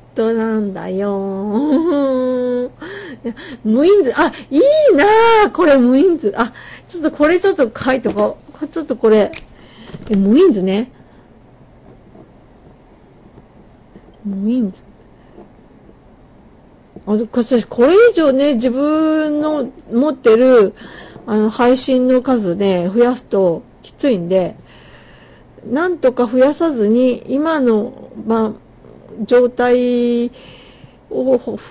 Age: 50-69